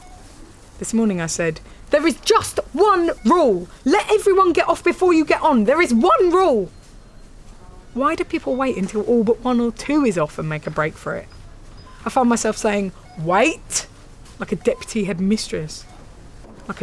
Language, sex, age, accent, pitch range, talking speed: English, female, 20-39, British, 140-230 Hz, 175 wpm